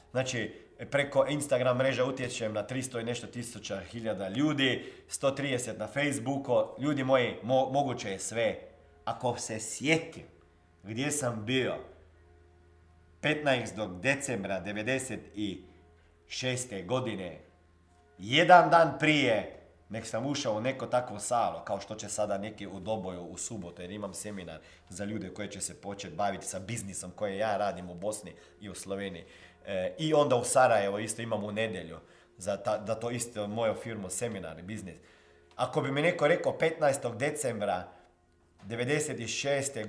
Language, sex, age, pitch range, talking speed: Croatian, male, 40-59, 95-130 Hz, 145 wpm